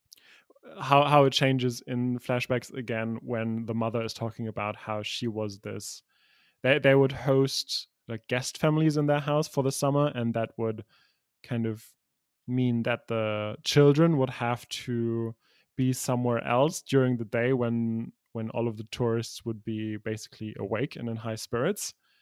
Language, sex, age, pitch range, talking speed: English, male, 20-39, 115-130 Hz, 165 wpm